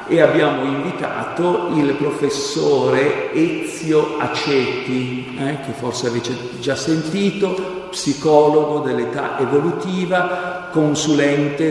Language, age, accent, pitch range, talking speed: Italian, 50-69, native, 130-150 Hz, 85 wpm